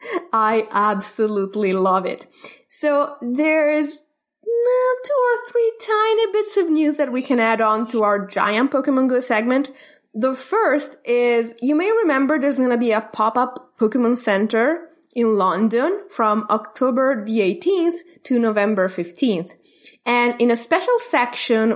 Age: 20-39